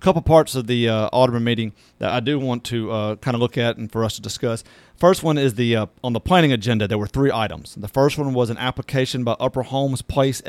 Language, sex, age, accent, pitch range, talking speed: English, male, 40-59, American, 120-140 Hz, 255 wpm